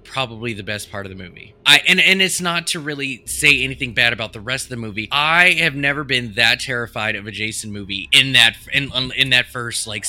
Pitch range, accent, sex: 110-140 Hz, American, male